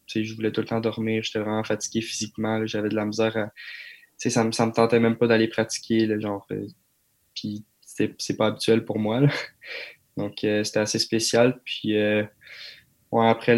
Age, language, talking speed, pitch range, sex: 20-39, French, 210 wpm, 105-115 Hz, male